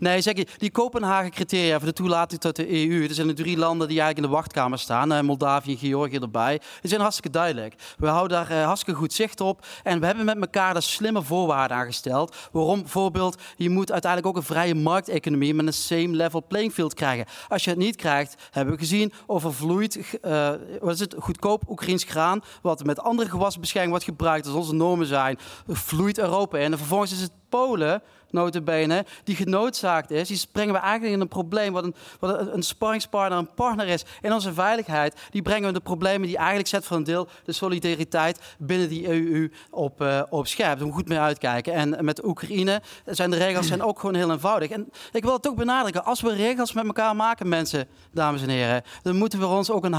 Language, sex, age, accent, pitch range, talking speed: Dutch, male, 30-49, Dutch, 160-205 Hz, 210 wpm